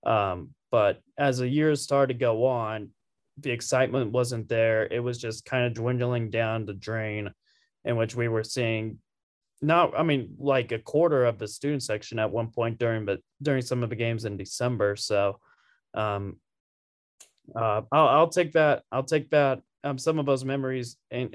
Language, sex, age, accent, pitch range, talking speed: English, male, 20-39, American, 115-145 Hz, 185 wpm